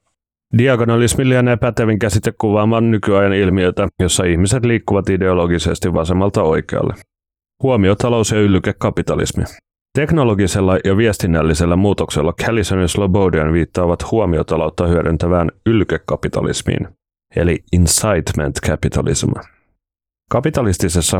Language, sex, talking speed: Finnish, male, 85 wpm